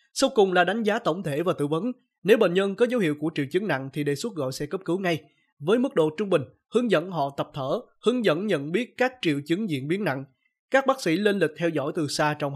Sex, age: male, 20-39